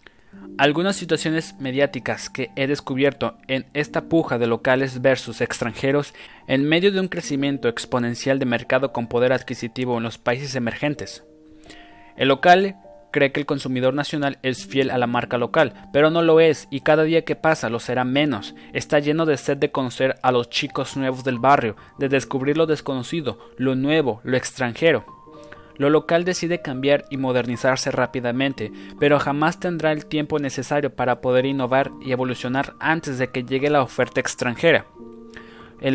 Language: Spanish